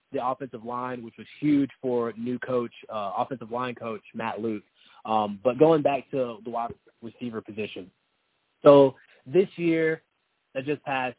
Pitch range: 115-140 Hz